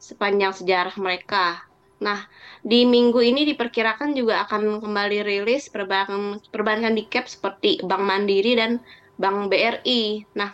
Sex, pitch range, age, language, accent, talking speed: female, 205-240 Hz, 20-39, Indonesian, native, 120 wpm